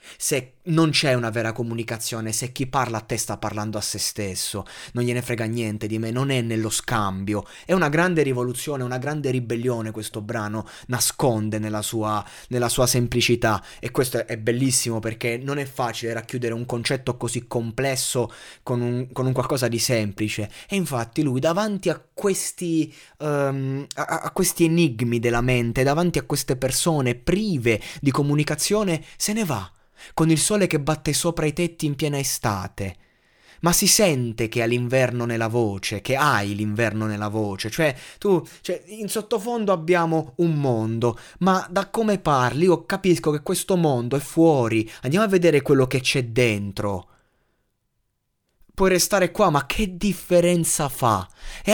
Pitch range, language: 115-160 Hz, Italian